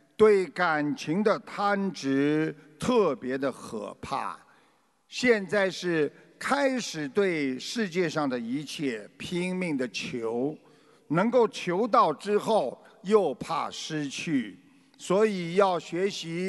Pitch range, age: 160-225 Hz, 50-69